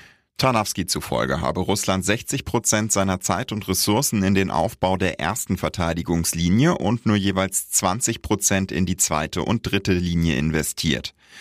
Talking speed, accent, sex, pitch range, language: 145 wpm, German, male, 85-105 Hz, German